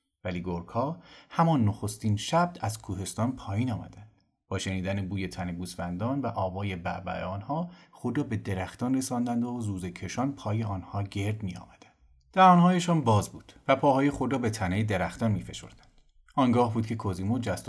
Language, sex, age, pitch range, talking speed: Persian, male, 30-49, 95-130 Hz, 155 wpm